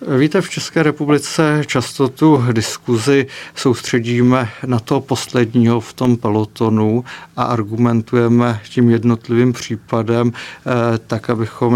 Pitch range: 115-125 Hz